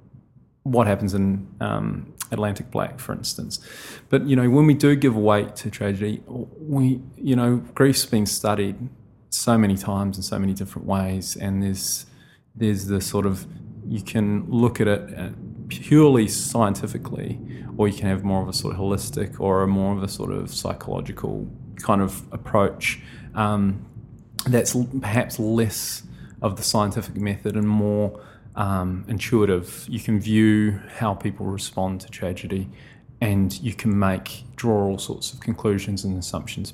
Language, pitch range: English, 100-120 Hz